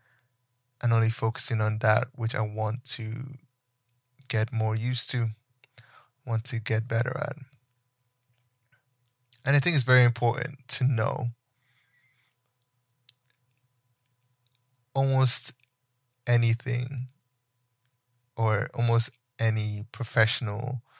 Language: English